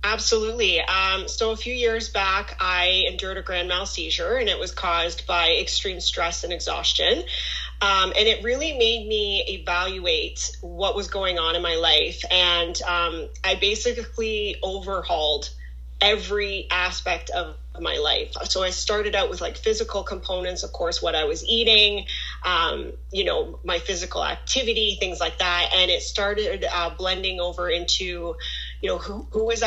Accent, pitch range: American, 175-225 Hz